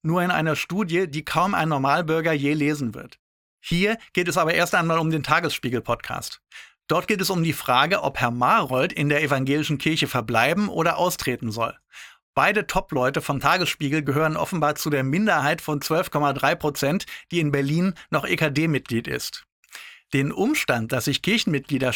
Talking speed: 165 wpm